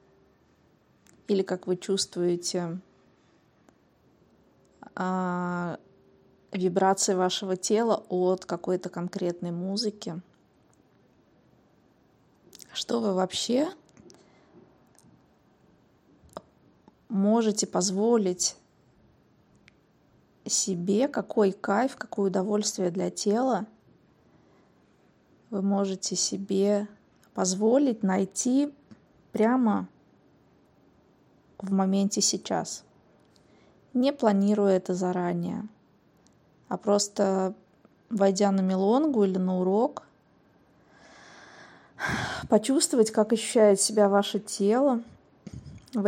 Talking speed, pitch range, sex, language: 65 wpm, 185-215 Hz, female, Russian